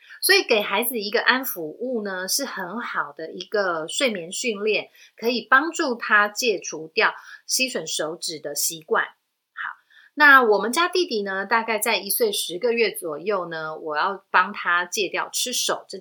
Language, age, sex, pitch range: Chinese, 30-49, female, 185-250 Hz